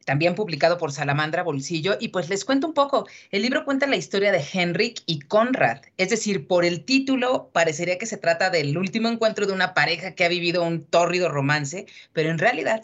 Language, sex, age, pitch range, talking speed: Spanish, female, 40-59, 160-215 Hz, 205 wpm